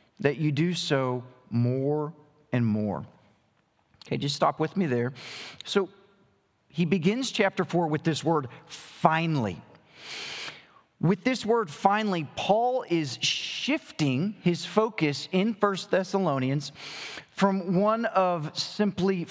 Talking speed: 120 wpm